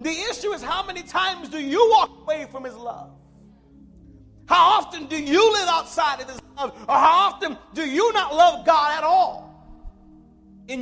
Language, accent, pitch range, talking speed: English, American, 275-345 Hz, 185 wpm